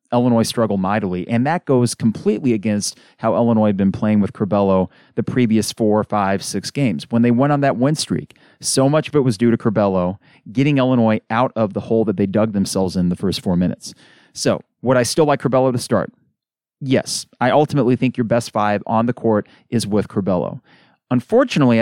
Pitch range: 105-135 Hz